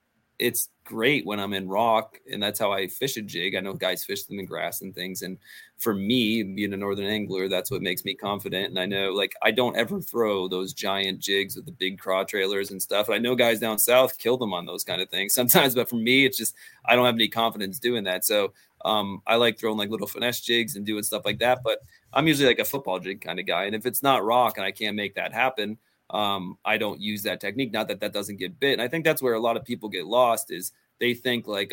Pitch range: 100-120 Hz